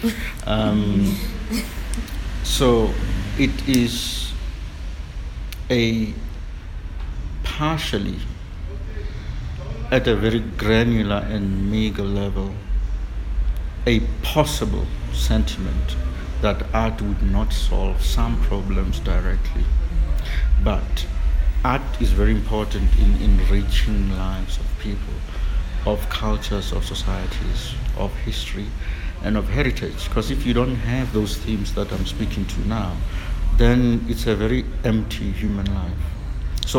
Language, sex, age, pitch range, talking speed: English, male, 60-79, 75-110 Hz, 105 wpm